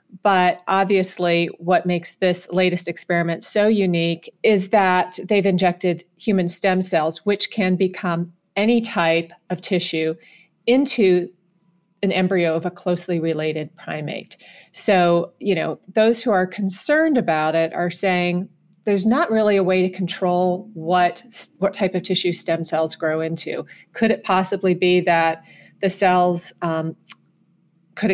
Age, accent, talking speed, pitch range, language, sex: 30-49, American, 145 wpm, 175-210 Hz, English, female